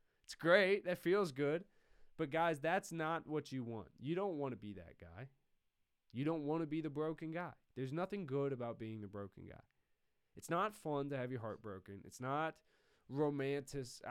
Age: 20-39